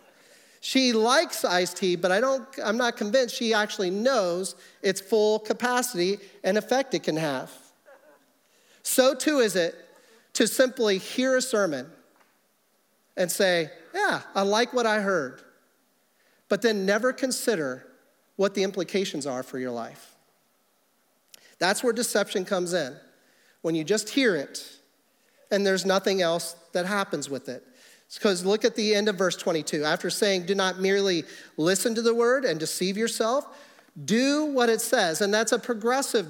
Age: 40-59